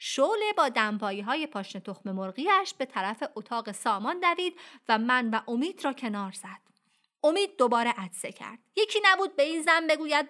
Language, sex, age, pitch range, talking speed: Persian, female, 30-49, 215-310 Hz, 165 wpm